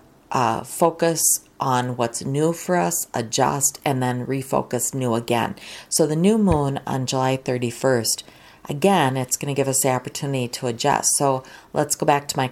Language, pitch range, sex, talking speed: English, 130-160 Hz, female, 175 wpm